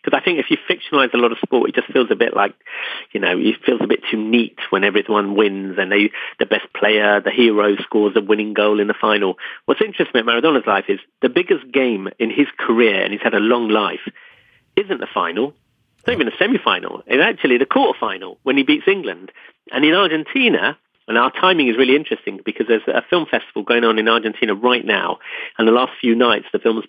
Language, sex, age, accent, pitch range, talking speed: English, male, 40-59, British, 110-145 Hz, 230 wpm